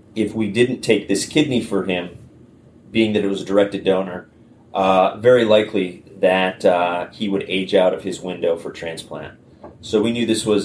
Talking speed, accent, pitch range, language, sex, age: 190 wpm, American, 90-100 Hz, English, male, 30-49